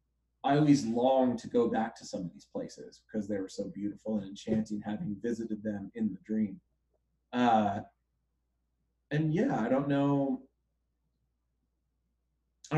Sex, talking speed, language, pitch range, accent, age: male, 145 wpm, English, 105-135 Hz, American, 30-49